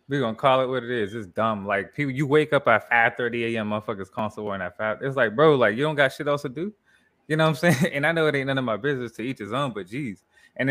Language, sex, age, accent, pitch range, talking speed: English, male, 20-39, American, 115-140 Hz, 310 wpm